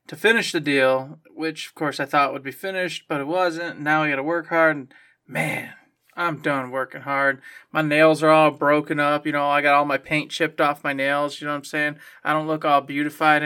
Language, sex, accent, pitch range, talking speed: English, male, American, 140-165 Hz, 240 wpm